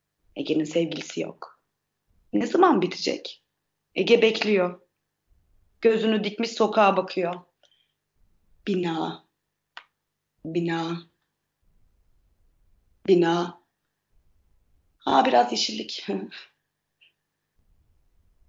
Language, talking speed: Turkish, 60 wpm